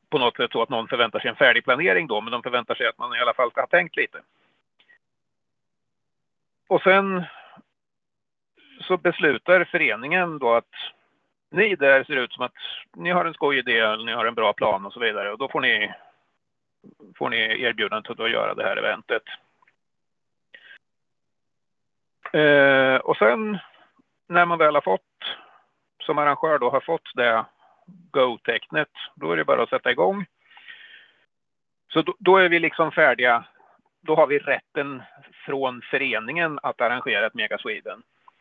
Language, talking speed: Swedish, 160 wpm